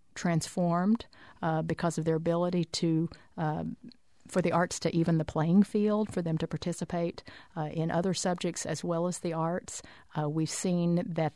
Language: English